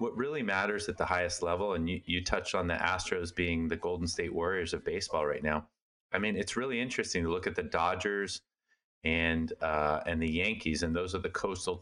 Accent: American